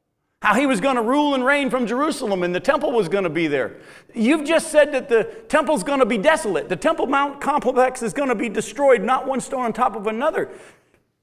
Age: 50-69